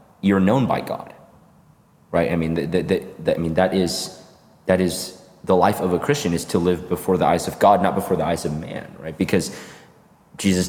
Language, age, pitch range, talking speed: English, 20-39, 85-95 Hz, 215 wpm